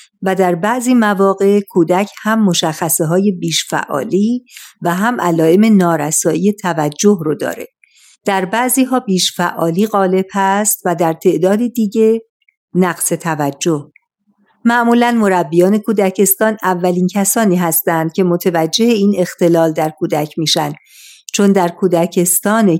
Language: Persian